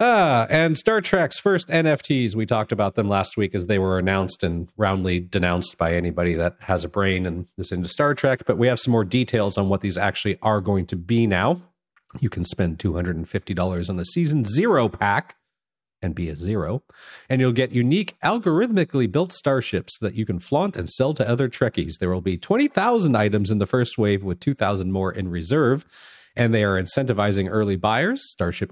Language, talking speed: English, 200 wpm